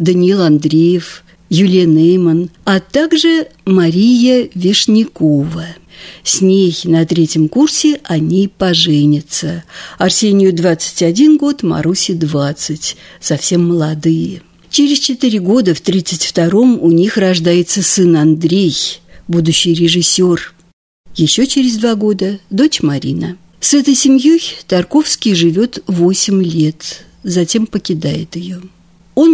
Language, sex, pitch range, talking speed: Russian, female, 170-225 Hz, 105 wpm